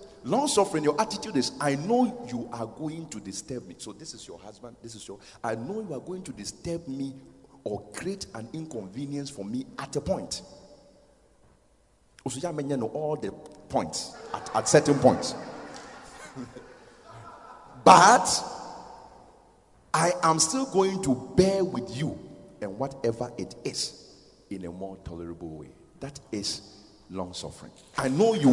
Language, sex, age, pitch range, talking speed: English, male, 50-69, 125-195 Hz, 145 wpm